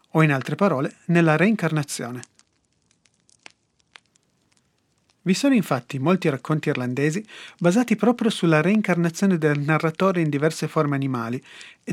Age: 30-49